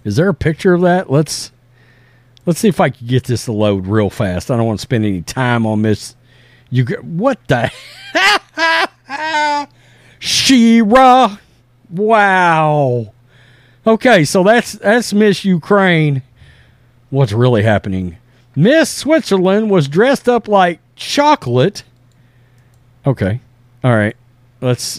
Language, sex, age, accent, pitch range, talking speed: English, male, 50-69, American, 120-195 Hz, 125 wpm